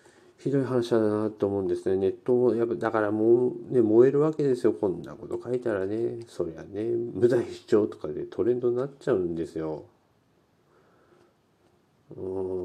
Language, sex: Japanese, male